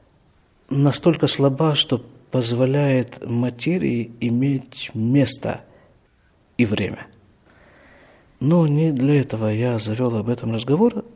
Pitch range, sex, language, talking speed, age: 110-155 Hz, male, Russian, 95 wpm, 50-69